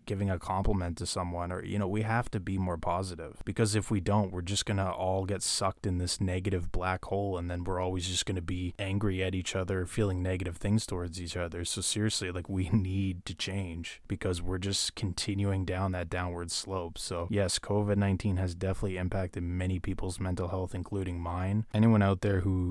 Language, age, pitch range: English, 20-39, 90-100 Hz